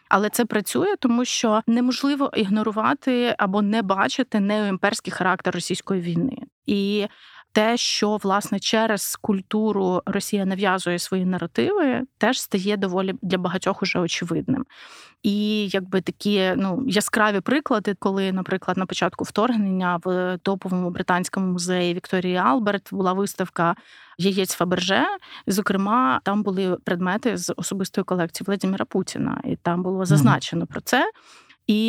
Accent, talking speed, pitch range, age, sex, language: native, 130 wpm, 185-220 Hz, 20-39, female, Ukrainian